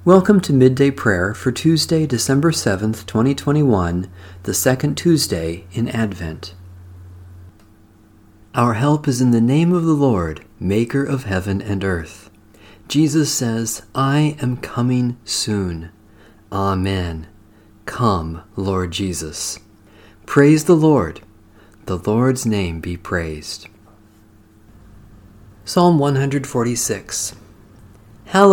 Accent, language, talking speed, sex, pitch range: American, English, 100 wpm, male, 105-140 Hz